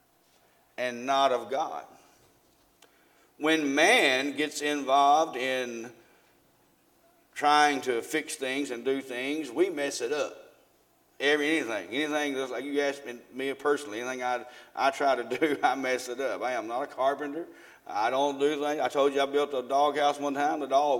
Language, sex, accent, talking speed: English, male, American, 175 wpm